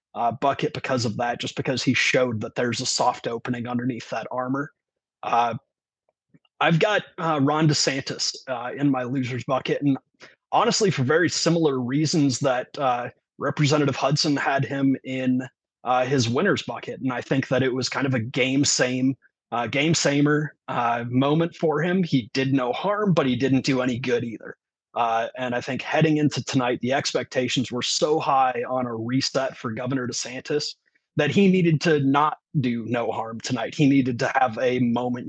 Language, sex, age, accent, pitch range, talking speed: English, male, 30-49, American, 125-140 Hz, 180 wpm